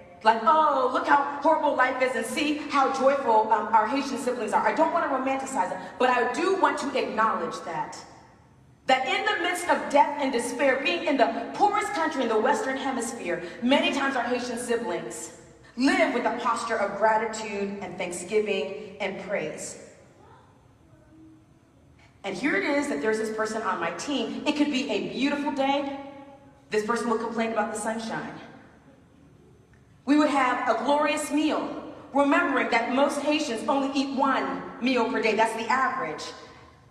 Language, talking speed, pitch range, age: English, 170 wpm, 225-300 Hz, 40-59